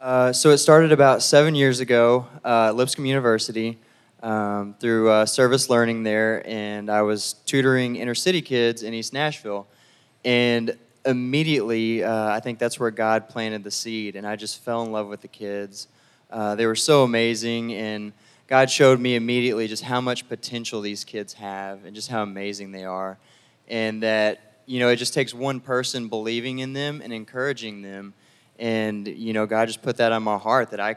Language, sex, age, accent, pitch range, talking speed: English, male, 20-39, American, 110-125 Hz, 190 wpm